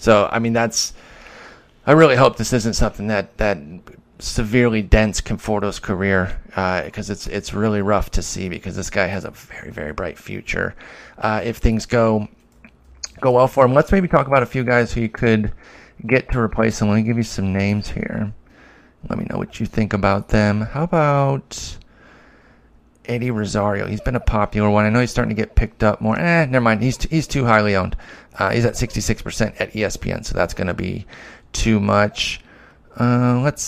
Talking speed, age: 210 wpm, 30-49